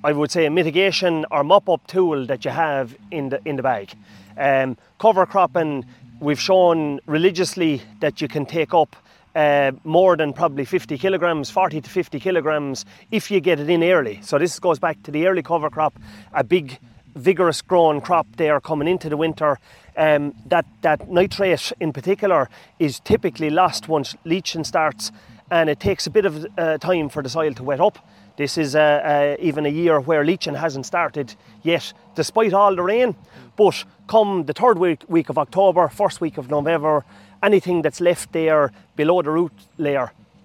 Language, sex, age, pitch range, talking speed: English, male, 30-49, 140-175 Hz, 185 wpm